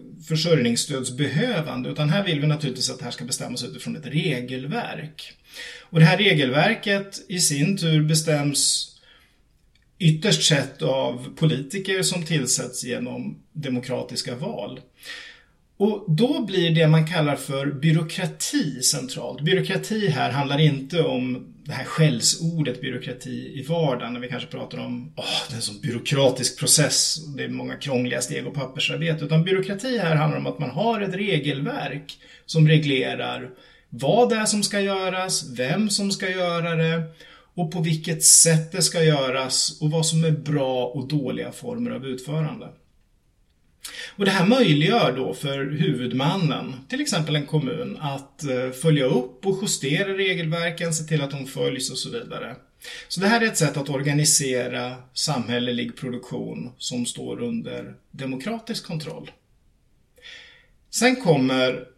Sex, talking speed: male, 145 wpm